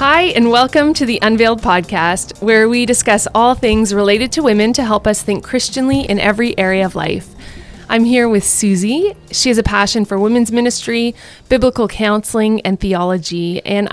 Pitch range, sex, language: 190-235 Hz, female, English